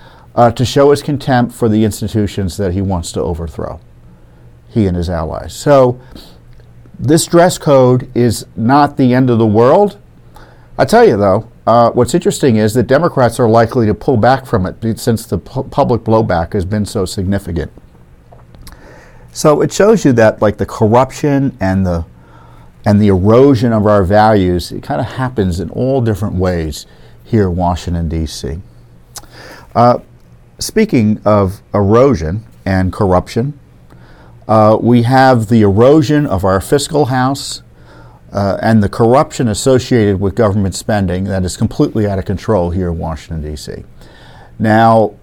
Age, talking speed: 50-69, 150 wpm